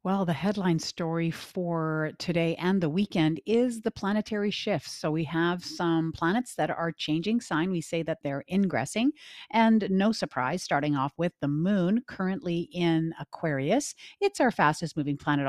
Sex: female